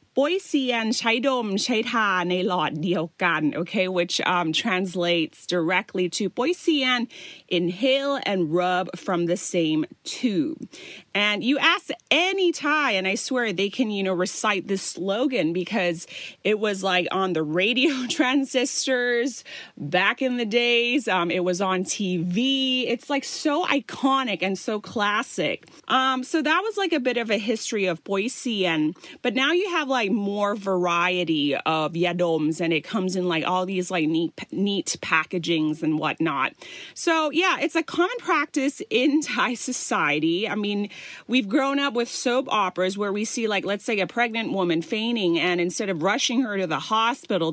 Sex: female